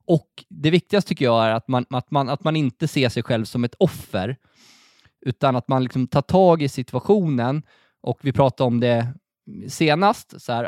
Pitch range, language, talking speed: 130-185 Hz, Swedish, 195 wpm